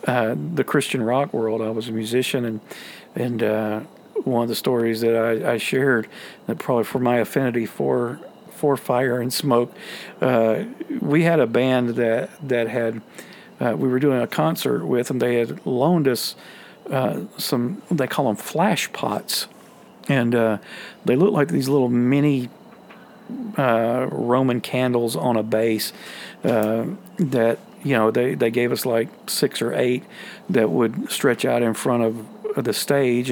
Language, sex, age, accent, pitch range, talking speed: English, male, 50-69, American, 115-145 Hz, 165 wpm